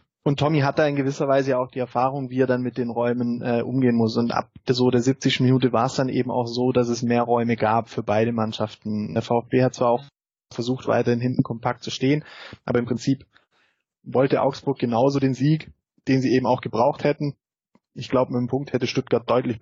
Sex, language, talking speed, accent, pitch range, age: male, German, 220 wpm, German, 115-130 Hz, 20-39